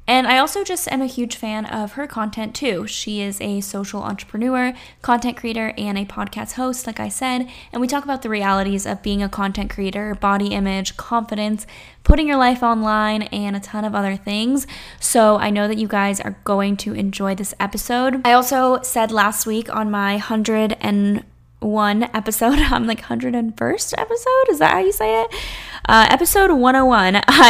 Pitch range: 200-240 Hz